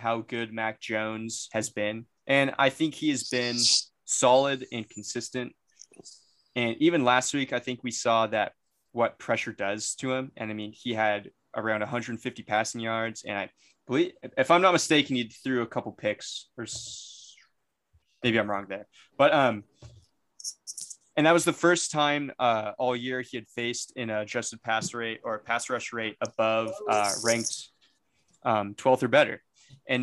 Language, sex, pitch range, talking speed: English, male, 110-125 Hz, 170 wpm